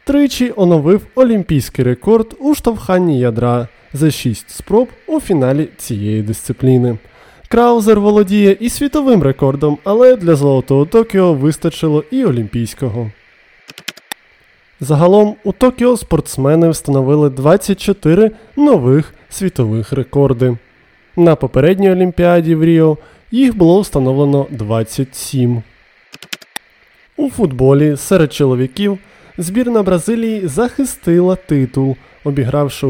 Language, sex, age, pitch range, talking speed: Ukrainian, male, 20-39, 135-195 Hz, 95 wpm